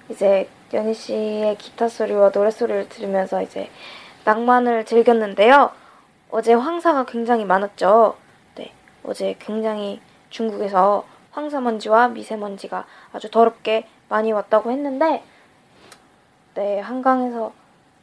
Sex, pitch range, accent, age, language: female, 210-260 Hz, native, 20-39, Korean